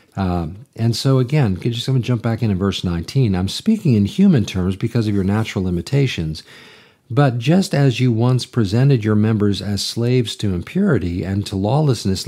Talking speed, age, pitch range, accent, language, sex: 190 wpm, 50-69, 100-135 Hz, American, English, male